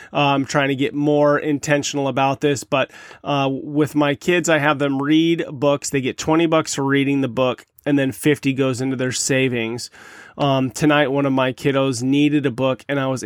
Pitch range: 130-145 Hz